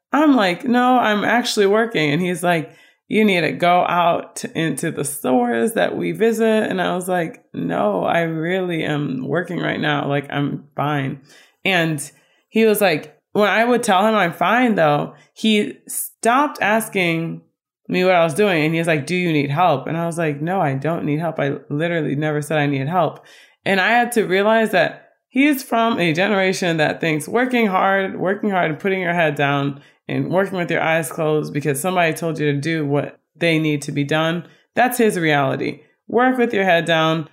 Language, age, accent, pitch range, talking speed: English, 20-39, American, 150-215 Hz, 200 wpm